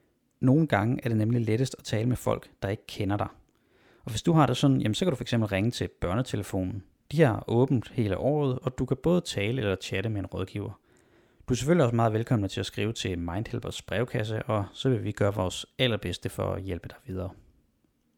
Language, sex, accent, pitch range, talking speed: Danish, male, native, 100-130 Hz, 220 wpm